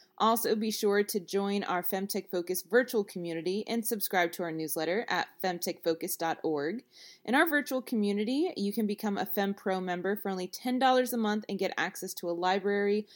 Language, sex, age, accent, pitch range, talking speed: English, female, 20-39, American, 180-235 Hz, 175 wpm